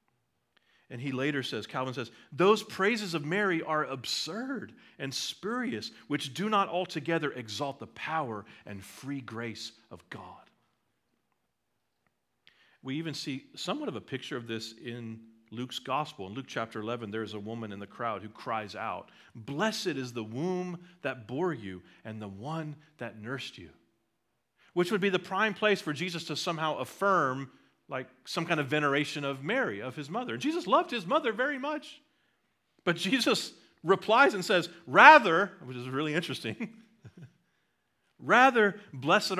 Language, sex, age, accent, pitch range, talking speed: English, male, 40-59, American, 120-195 Hz, 155 wpm